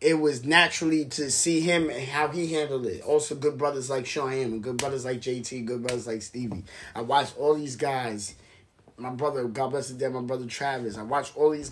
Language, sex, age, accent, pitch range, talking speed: English, male, 20-39, American, 115-140 Hz, 220 wpm